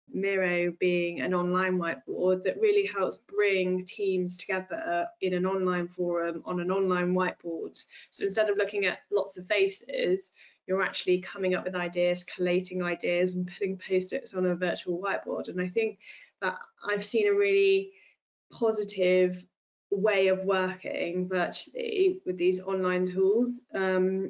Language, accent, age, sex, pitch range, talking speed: English, British, 20-39, female, 180-205 Hz, 150 wpm